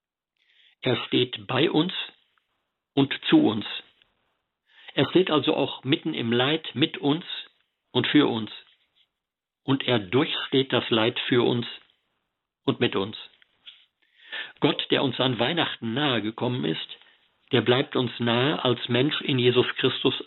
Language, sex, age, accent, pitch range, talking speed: German, male, 50-69, German, 115-150 Hz, 135 wpm